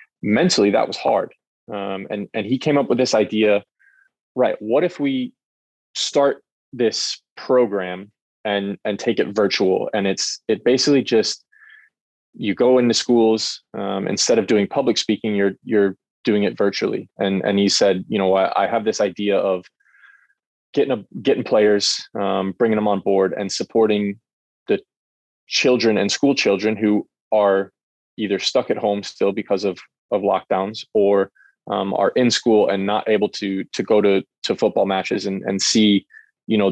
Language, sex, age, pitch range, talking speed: English, male, 20-39, 100-115 Hz, 170 wpm